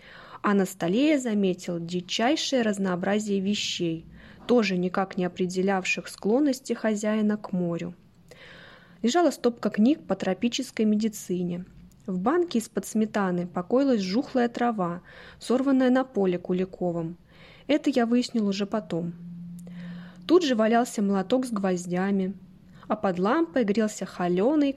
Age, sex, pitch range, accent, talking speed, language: 20-39, female, 180-230 Hz, native, 120 wpm, Russian